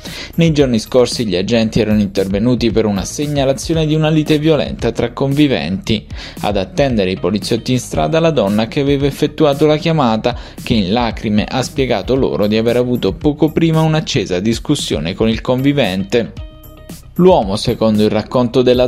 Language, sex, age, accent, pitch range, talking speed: Italian, male, 20-39, native, 110-150 Hz, 160 wpm